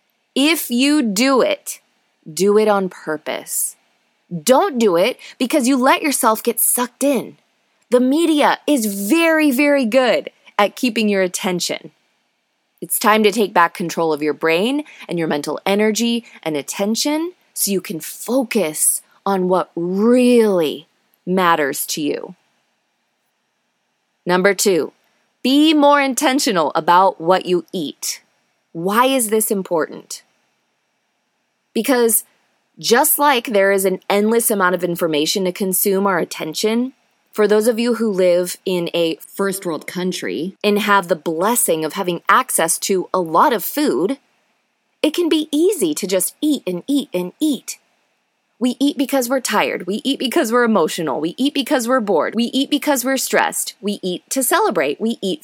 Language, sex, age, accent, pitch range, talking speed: English, female, 20-39, American, 185-270 Hz, 150 wpm